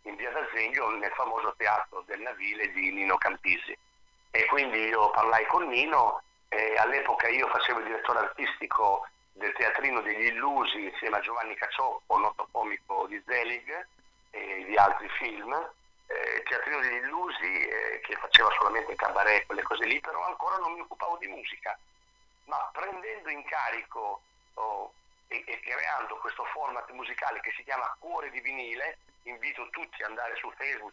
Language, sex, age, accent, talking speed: Italian, male, 50-69, native, 165 wpm